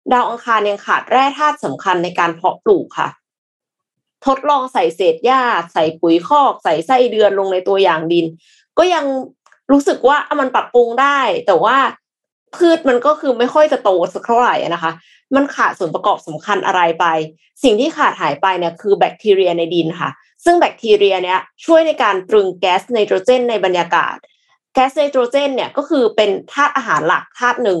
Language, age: Thai, 20-39